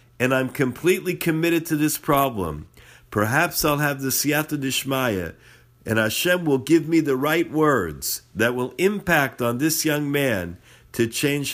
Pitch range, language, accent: 110-150 Hz, English, American